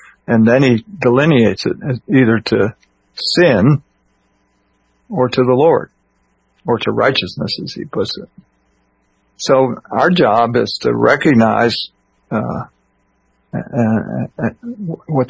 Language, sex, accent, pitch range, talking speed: English, male, American, 100-125 Hz, 120 wpm